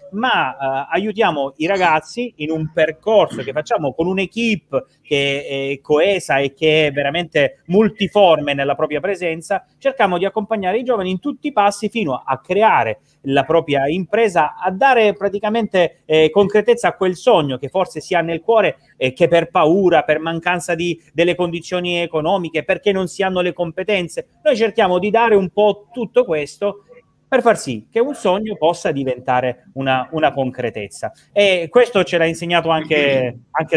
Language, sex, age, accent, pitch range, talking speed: Italian, male, 30-49, native, 150-200 Hz, 165 wpm